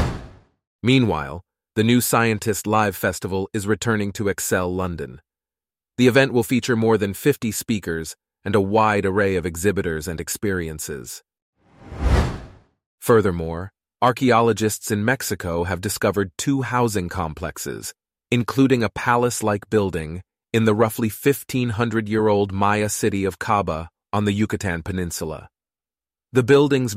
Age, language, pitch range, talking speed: 30-49, English, 100-125 Hz, 120 wpm